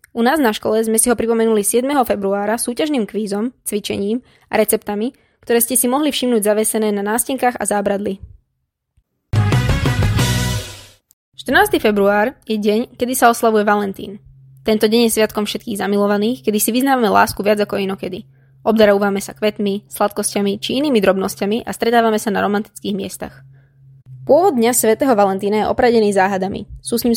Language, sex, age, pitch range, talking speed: Slovak, female, 20-39, 200-230 Hz, 150 wpm